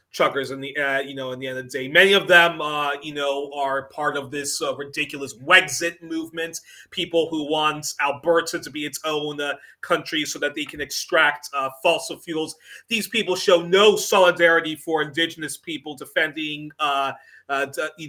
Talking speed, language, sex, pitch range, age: 190 wpm, English, male, 150-180 Hz, 30-49